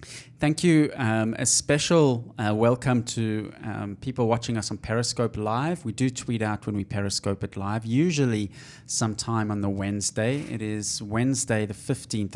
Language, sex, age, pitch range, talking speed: English, male, 20-39, 105-125 Hz, 165 wpm